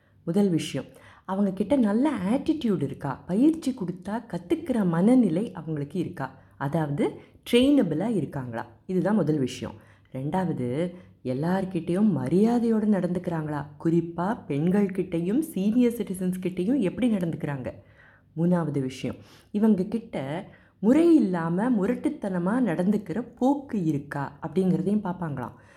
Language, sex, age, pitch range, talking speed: Tamil, female, 20-39, 150-210 Hz, 95 wpm